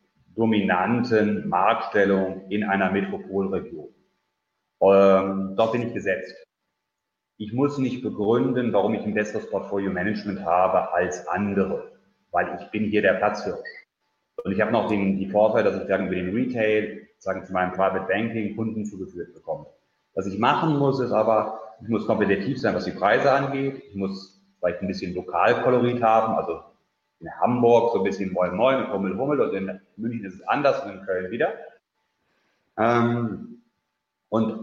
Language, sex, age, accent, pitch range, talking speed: German, male, 30-49, German, 95-120 Hz, 155 wpm